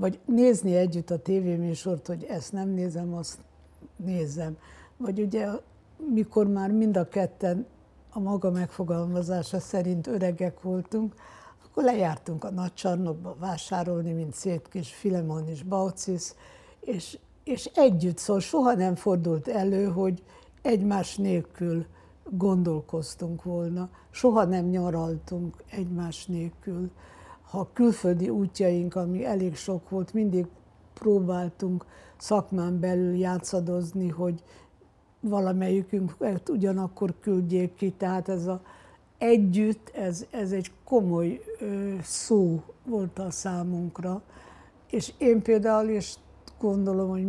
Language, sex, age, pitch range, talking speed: Hungarian, female, 60-79, 175-205 Hz, 110 wpm